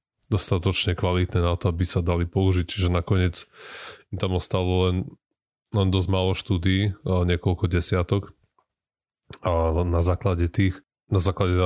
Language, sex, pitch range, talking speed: Slovak, male, 85-95 Hz, 135 wpm